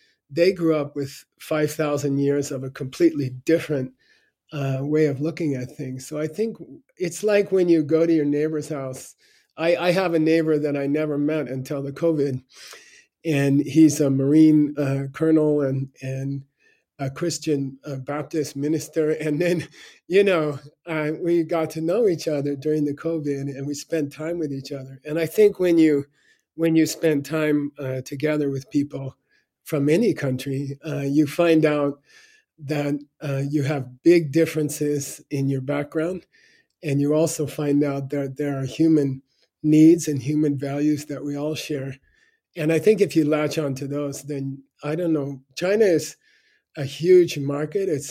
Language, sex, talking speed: English, male, 170 wpm